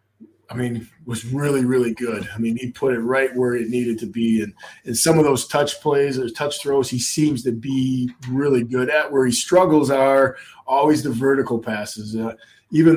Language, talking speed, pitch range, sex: English, 205 wpm, 115-140 Hz, male